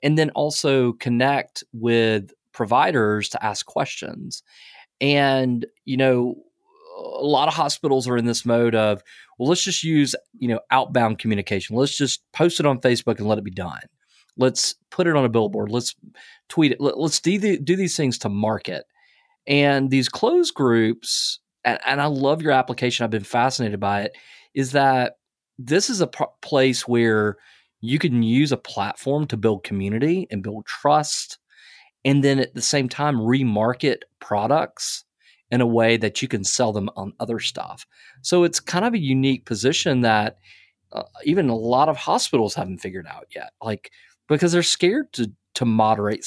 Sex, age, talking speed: male, 30-49, 170 wpm